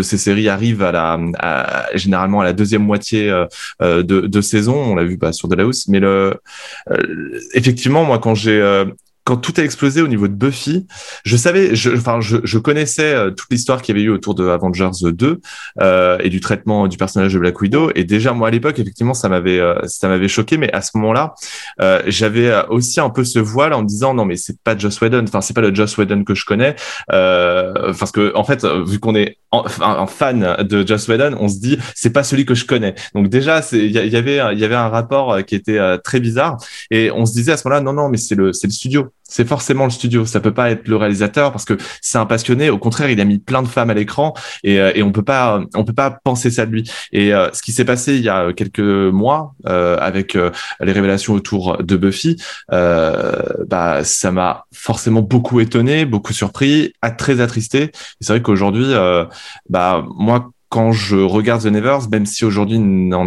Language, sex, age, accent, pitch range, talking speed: French, male, 20-39, French, 100-125 Hz, 230 wpm